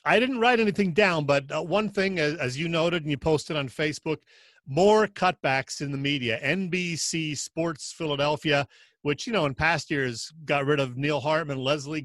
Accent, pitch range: American, 130-160 Hz